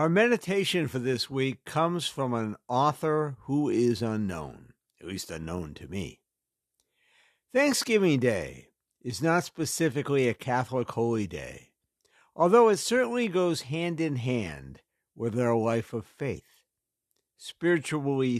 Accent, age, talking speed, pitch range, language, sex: American, 60-79, 120 wpm, 125-170 Hz, English, male